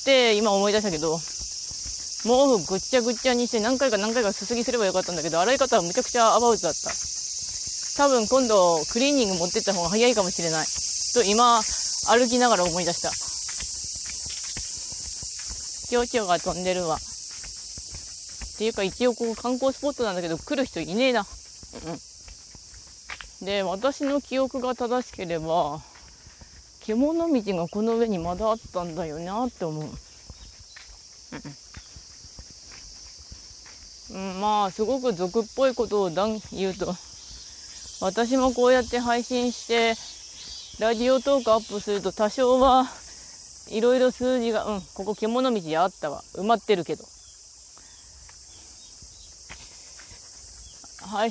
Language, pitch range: Japanese, 165-245 Hz